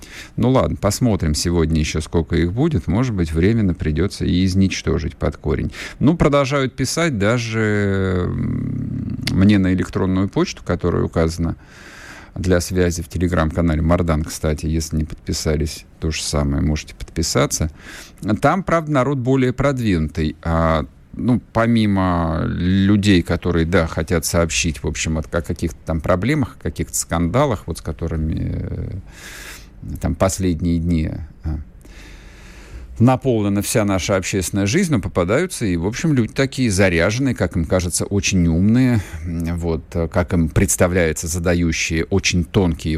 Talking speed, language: 135 wpm, Russian